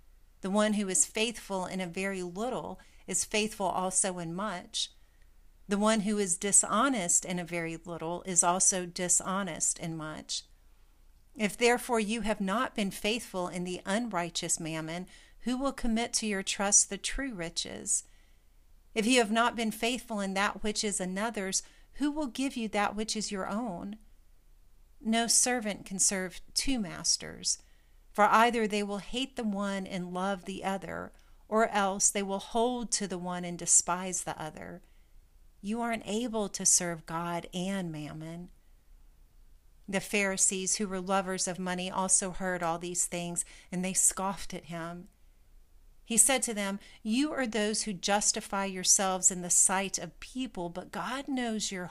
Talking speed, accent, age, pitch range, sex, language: 165 wpm, American, 50-69, 175-215 Hz, female, English